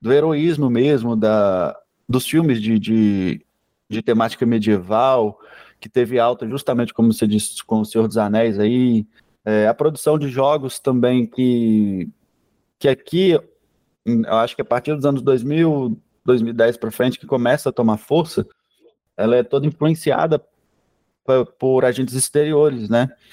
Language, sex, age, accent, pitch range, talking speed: Portuguese, male, 20-39, Brazilian, 115-150 Hz, 140 wpm